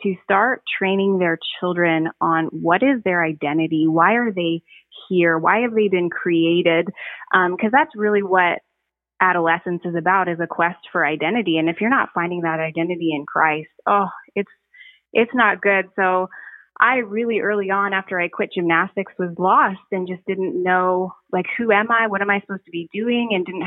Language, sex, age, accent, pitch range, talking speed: English, female, 20-39, American, 170-205 Hz, 190 wpm